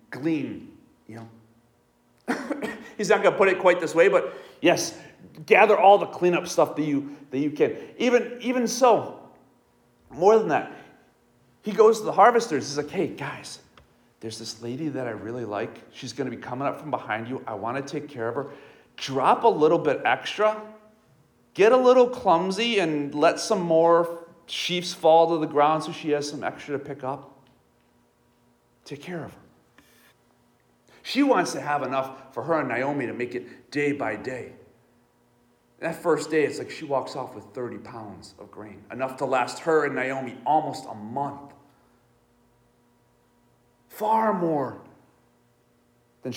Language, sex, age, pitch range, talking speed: English, male, 40-59, 130-205 Hz, 170 wpm